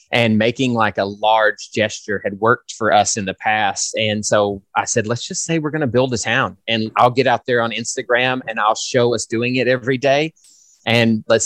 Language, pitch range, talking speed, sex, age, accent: English, 105-125 Hz, 225 wpm, male, 30-49, American